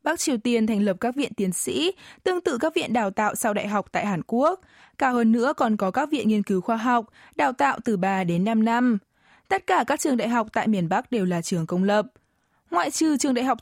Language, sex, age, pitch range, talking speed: Vietnamese, female, 20-39, 200-270 Hz, 255 wpm